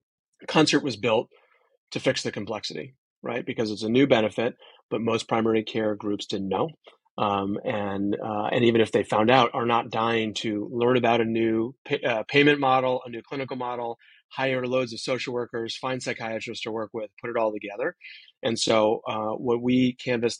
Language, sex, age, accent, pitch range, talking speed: English, male, 30-49, American, 105-120 Hz, 190 wpm